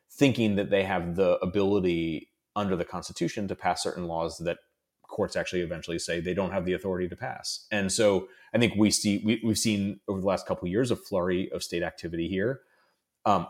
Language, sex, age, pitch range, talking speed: English, male, 30-49, 90-110 Hz, 195 wpm